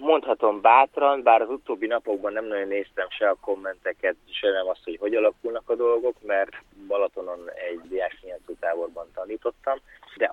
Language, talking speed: Hungarian, 155 wpm